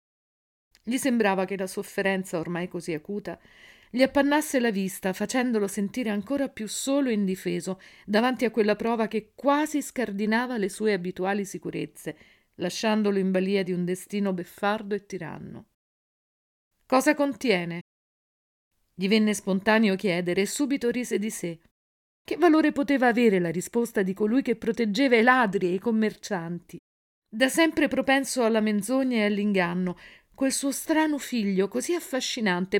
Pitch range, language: 185-255 Hz, Italian